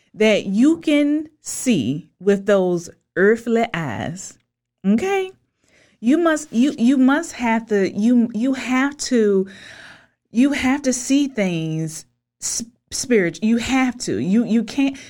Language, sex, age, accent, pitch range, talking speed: English, female, 30-49, American, 185-260 Hz, 125 wpm